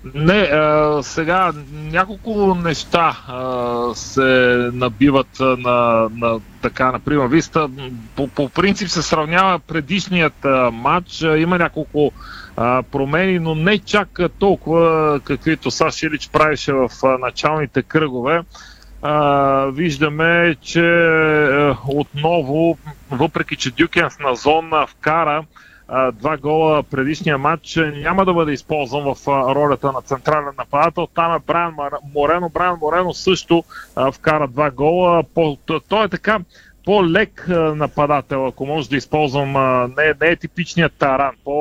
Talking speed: 120 wpm